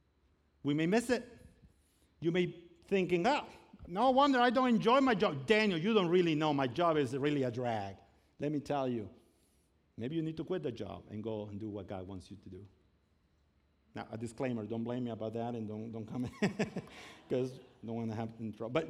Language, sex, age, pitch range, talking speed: English, male, 50-69, 110-180 Hz, 220 wpm